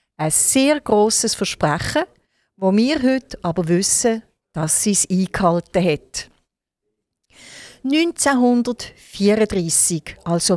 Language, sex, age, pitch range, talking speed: German, female, 50-69, 175-240 Hz, 90 wpm